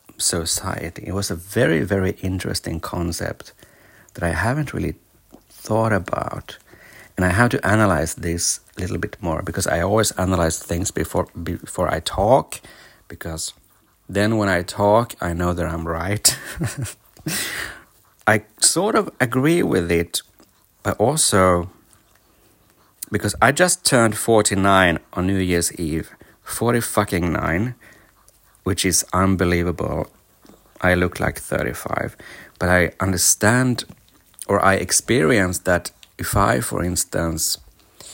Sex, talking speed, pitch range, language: male, 125 wpm, 85-105 Hz, English